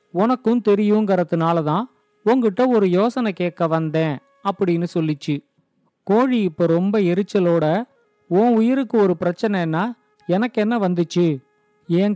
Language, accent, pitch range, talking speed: Tamil, native, 175-225 Hz, 105 wpm